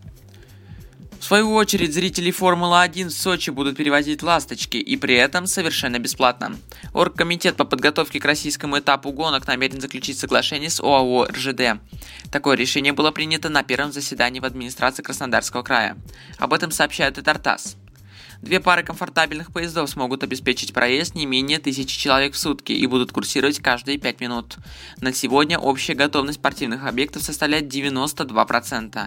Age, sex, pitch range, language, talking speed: 20-39, male, 125-155 Hz, Russian, 145 wpm